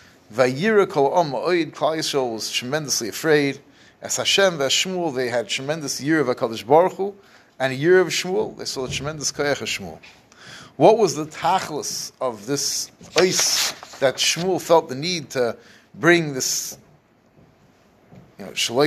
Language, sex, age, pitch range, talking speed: English, male, 30-49, 130-170 Hz, 135 wpm